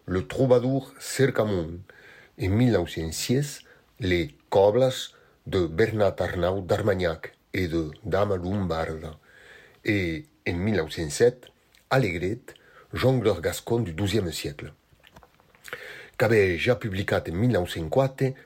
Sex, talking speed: male, 105 wpm